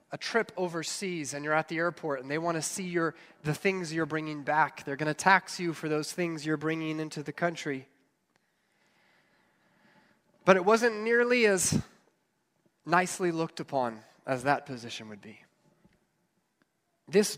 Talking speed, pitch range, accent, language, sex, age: 160 wpm, 150-190 Hz, American, English, male, 30-49